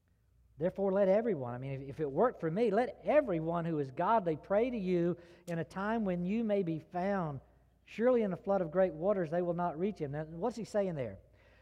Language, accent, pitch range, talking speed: English, American, 145-215 Hz, 215 wpm